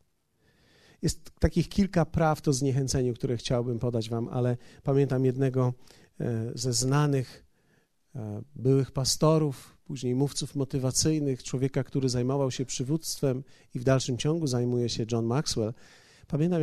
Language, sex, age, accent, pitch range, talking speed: Polish, male, 40-59, native, 125-170 Hz, 125 wpm